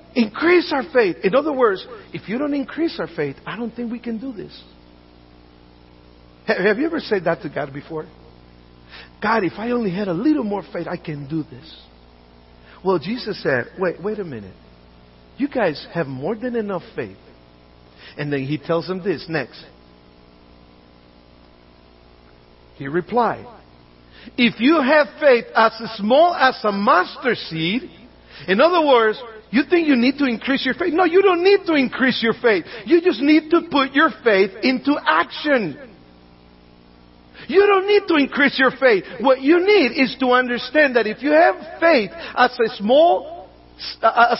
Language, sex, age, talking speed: English, male, 50-69, 160 wpm